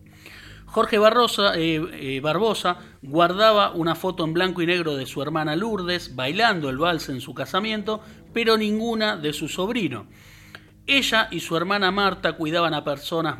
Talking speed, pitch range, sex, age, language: 150 wpm, 140-195 Hz, male, 40-59, Spanish